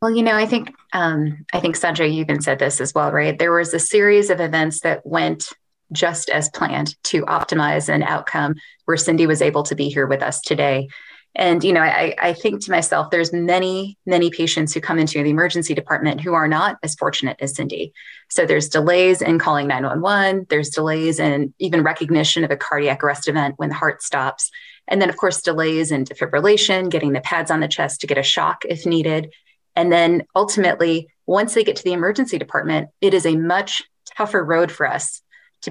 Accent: American